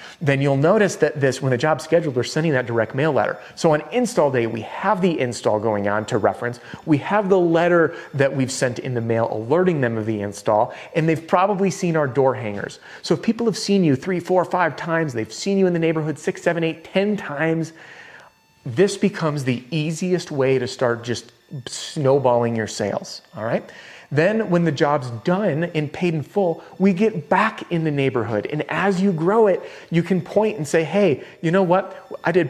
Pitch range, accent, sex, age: 125-170 Hz, American, male, 30-49